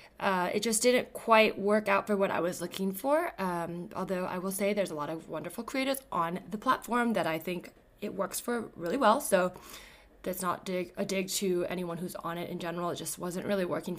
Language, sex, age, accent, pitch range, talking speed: English, female, 20-39, American, 175-225 Hz, 225 wpm